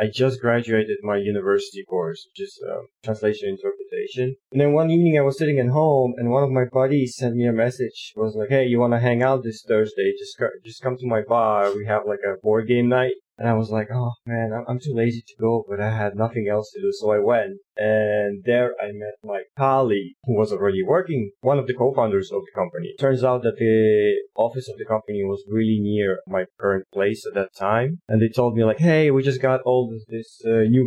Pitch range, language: 110-140 Hz, English